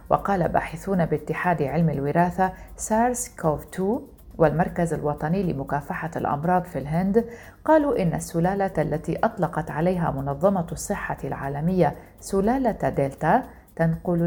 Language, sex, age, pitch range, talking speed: Arabic, female, 40-59, 150-200 Hz, 110 wpm